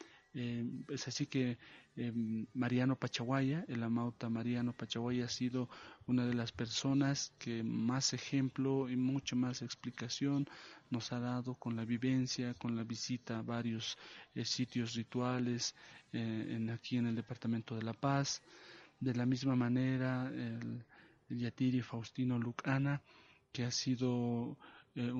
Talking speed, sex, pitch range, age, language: 140 wpm, male, 115-130 Hz, 40-59, Spanish